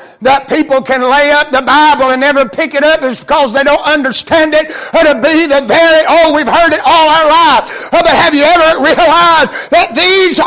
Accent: American